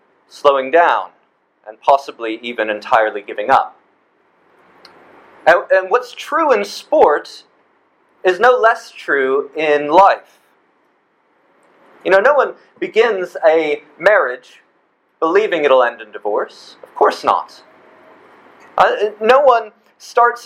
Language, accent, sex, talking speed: English, American, male, 115 wpm